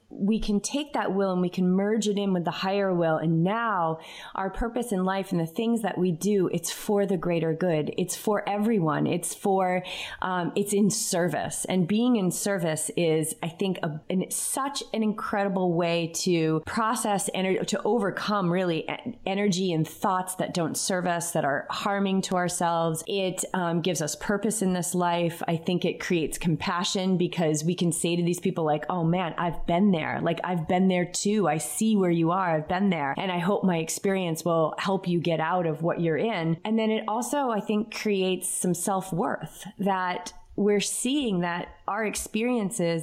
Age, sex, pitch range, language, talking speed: 30-49, female, 175-215 Hz, English, 200 wpm